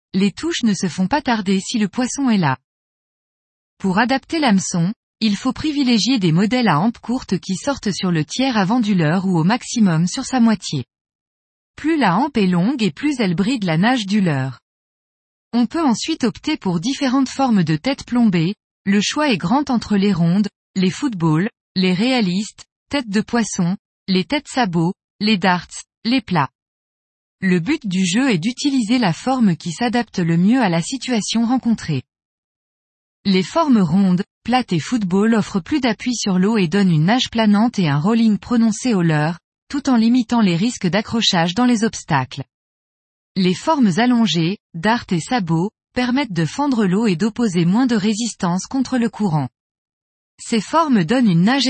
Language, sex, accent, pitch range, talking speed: French, female, French, 180-245 Hz, 175 wpm